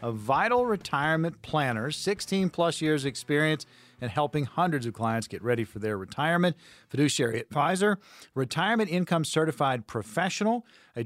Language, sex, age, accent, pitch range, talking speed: English, male, 40-59, American, 125-170 Hz, 135 wpm